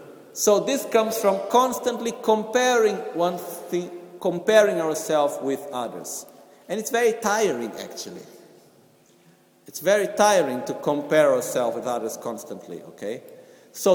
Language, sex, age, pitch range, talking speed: Italian, male, 50-69, 160-215 Hz, 110 wpm